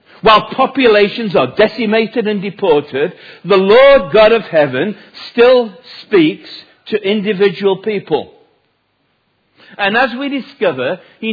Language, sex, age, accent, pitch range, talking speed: English, male, 50-69, British, 145-210 Hz, 110 wpm